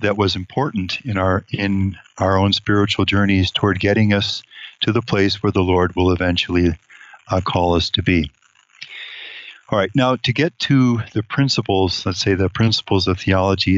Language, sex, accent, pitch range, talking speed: English, male, American, 95-110 Hz, 175 wpm